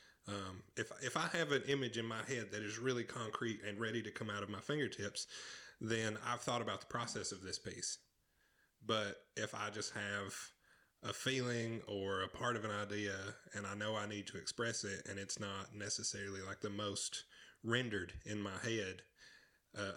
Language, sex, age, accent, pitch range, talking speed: English, male, 30-49, American, 100-115 Hz, 190 wpm